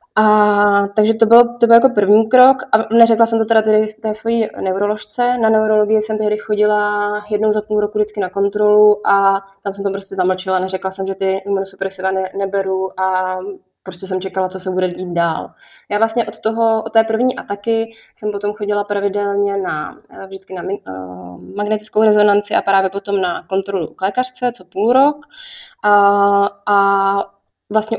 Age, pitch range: 20-39, 195-220 Hz